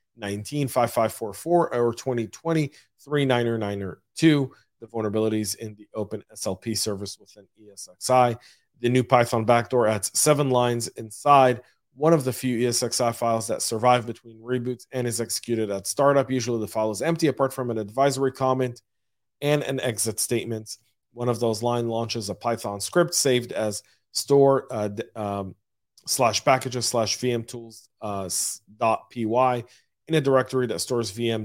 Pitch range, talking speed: 110-130 Hz, 170 wpm